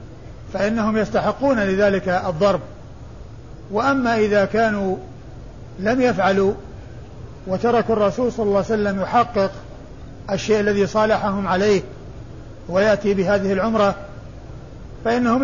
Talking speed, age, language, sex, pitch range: 95 wpm, 50-69, Arabic, male, 170-210 Hz